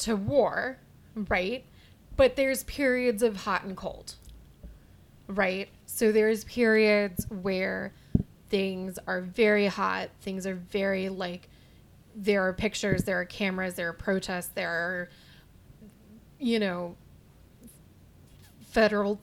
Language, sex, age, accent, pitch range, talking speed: English, female, 20-39, American, 185-220 Hz, 115 wpm